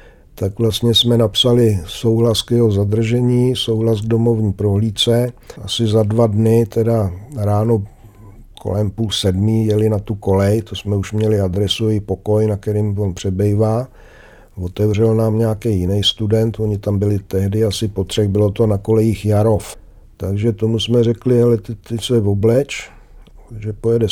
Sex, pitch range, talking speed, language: male, 105-120 Hz, 155 wpm, Czech